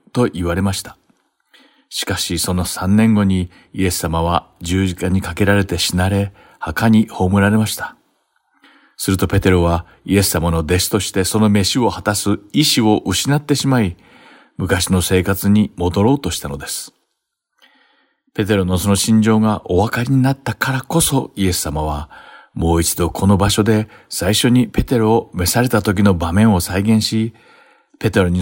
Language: Japanese